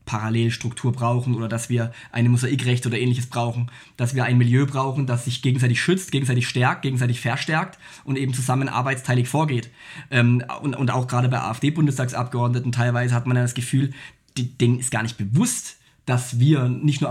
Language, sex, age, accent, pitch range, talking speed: German, male, 20-39, German, 130-155 Hz, 170 wpm